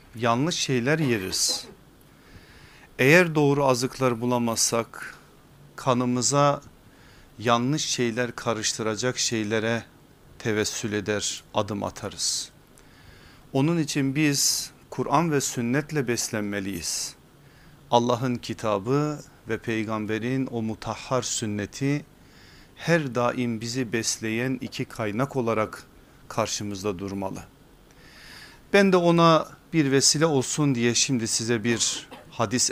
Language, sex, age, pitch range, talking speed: Turkish, male, 40-59, 115-150 Hz, 90 wpm